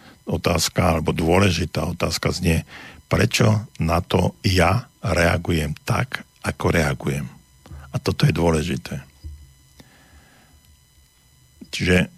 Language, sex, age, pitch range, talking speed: Slovak, male, 50-69, 85-105 Hz, 90 wpm